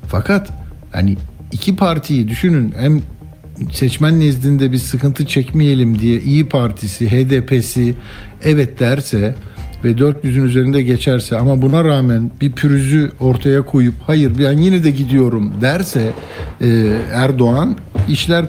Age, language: 60-79, Turkish